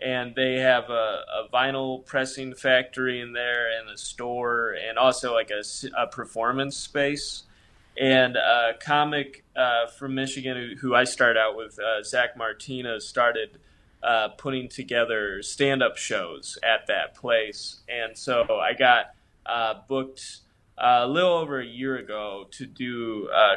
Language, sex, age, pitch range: English, male, 20-39, 115-135 Hz